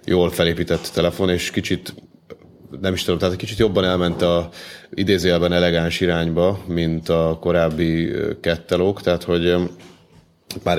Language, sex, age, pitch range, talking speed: Hungarian, male, 30-49, 80-90 Hz, 130 wpm